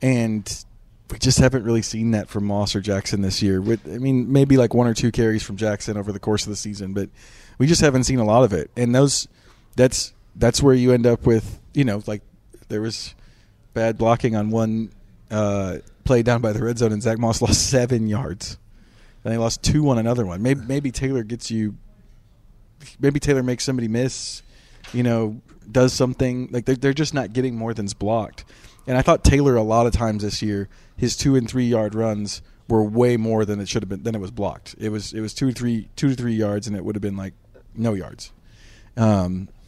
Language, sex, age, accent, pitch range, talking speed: English, male, 30-49, American, 105-125 Hz, 220 wpm